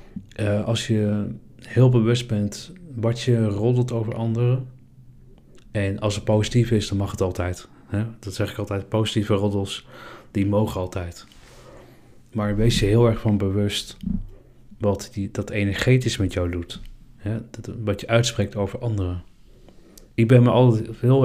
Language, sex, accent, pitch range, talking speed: Dutch, male, Dutch, 100-115 Hz, 160 wpm